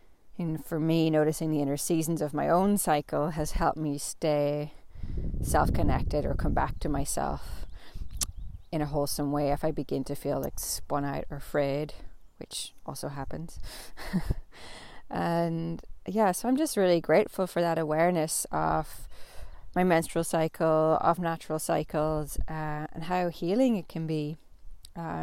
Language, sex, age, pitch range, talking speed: English, female, 20-39, 150-180 Hz, 150 wpm